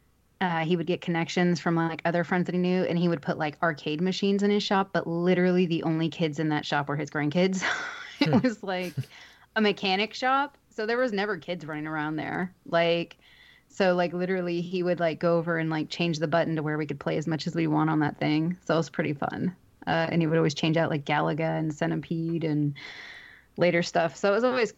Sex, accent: female, American